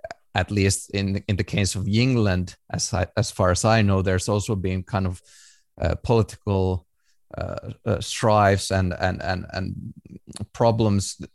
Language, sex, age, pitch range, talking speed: English, male, 30-49, 90-105 Hz, 160 wpm